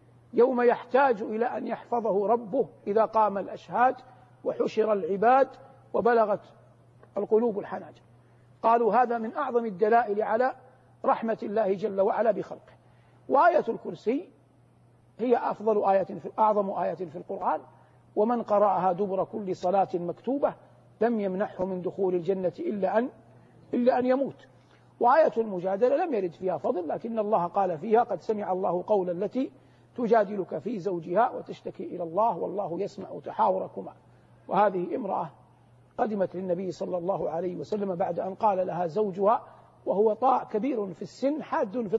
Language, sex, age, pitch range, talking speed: Arabic, male, 50-69, 175-225 Hz, 135 wpm